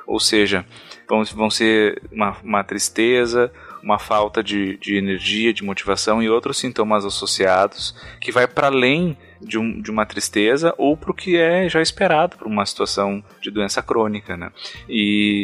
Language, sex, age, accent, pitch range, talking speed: Portuguese, male, 20-39, Brazilian, 105-130 Hz, 155 wpm